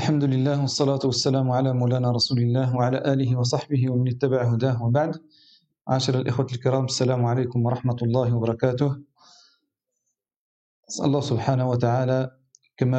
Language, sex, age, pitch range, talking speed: French, male, 40-59, 125-140 Hz, 130 wpm